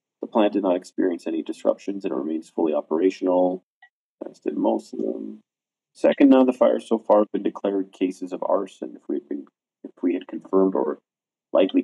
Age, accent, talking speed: 30-49, American, 190 wpm